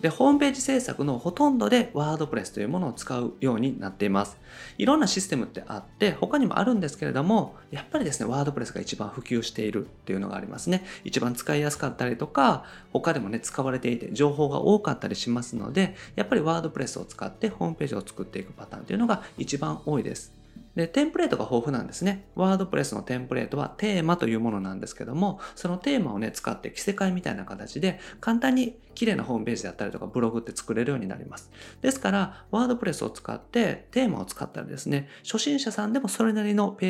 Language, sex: Japanese, male